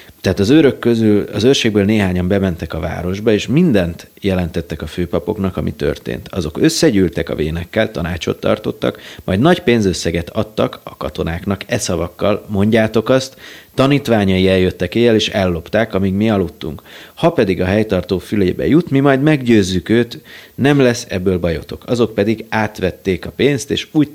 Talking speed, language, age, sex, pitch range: 155 wpm, Hungarian, 30-49, male, 85-105 Hz